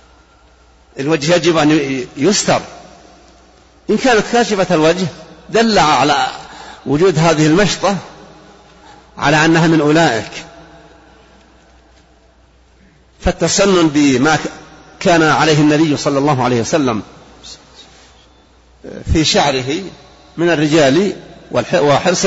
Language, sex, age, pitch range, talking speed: Arabic, male, 50-69, 140-170 Hz, 85 wpm